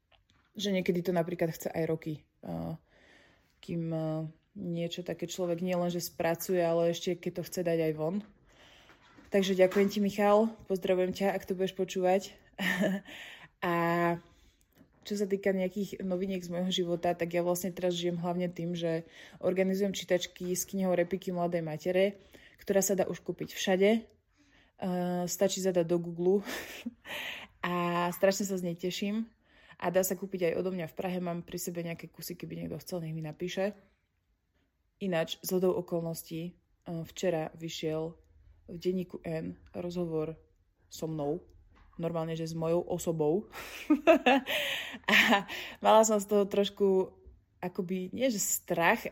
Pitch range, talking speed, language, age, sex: 165-195 Hz, 145 wpm, Slovak, 20-39, female